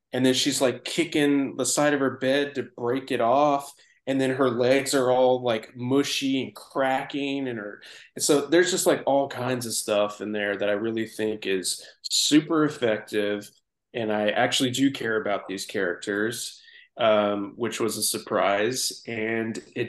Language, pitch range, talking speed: English, 110-135 Hz, 180 wpm